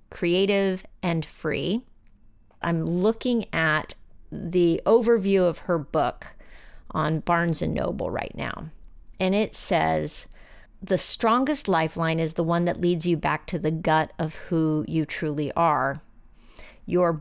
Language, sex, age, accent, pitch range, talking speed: English, female, 40-59, American, 155-195 Hz, 135 wpm